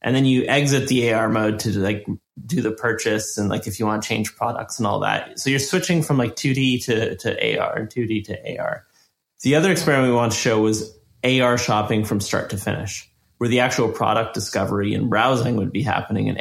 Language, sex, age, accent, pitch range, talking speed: English, male, 30-49, American, 110-125 Hz, 220 wpm